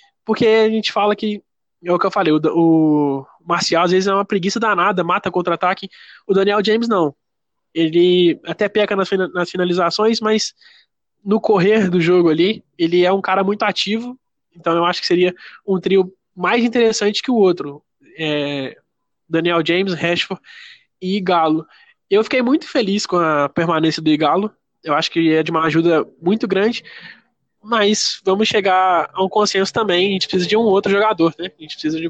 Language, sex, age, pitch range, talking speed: Portuguese, male, 20-39, 165-200 Hz, 180 wpm